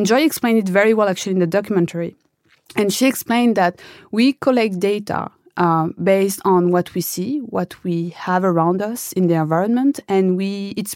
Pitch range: 175-215 Hz